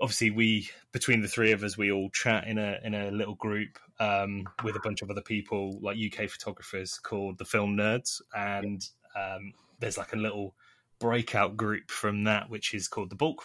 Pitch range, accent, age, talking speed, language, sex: 100-115 Hz, British, 20-39, 200 wpm, English, male